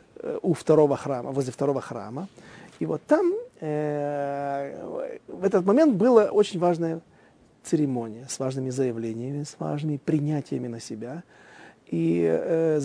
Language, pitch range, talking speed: Russian, 130-165 Hz, 125 wpm